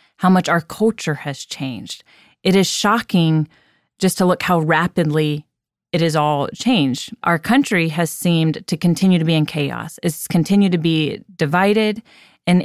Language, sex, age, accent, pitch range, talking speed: English, female, 30-49, American, 160-195 Hz, 160 wpm